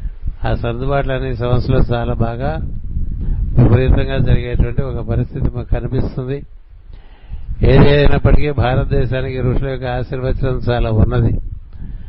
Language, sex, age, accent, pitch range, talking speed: Telugu, male, 60-79, native, 105-135 Hz, 90 wpm